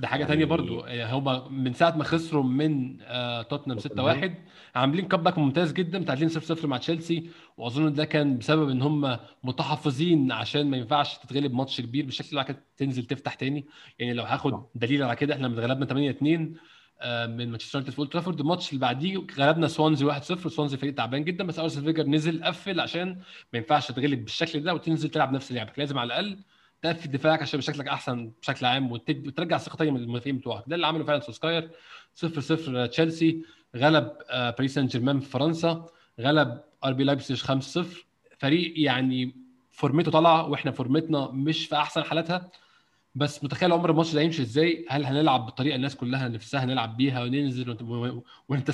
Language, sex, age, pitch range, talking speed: Arabic, male, 20-39, 130-160 Hz, 165 wpm